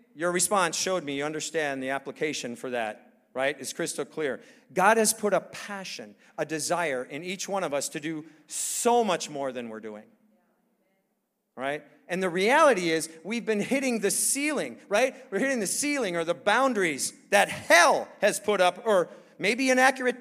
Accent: American